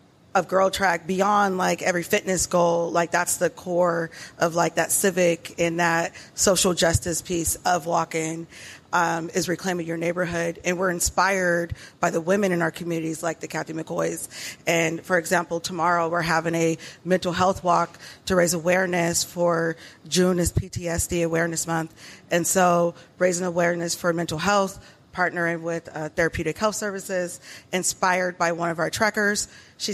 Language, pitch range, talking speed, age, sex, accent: English, 165-185 Hz, 160 wpm, 30-49, female, American